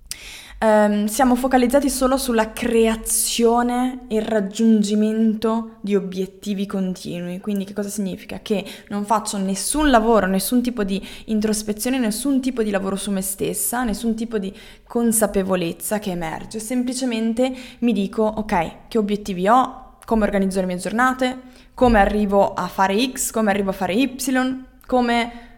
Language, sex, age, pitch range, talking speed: Italian, female, 20-39, 195-240 Hz, 140 wpm